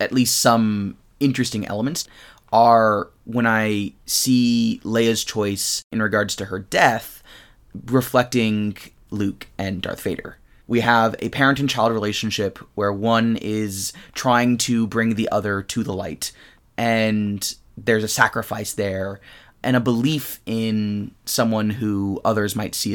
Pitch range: 100-120 Hz